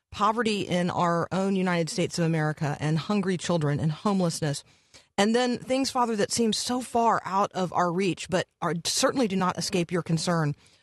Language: English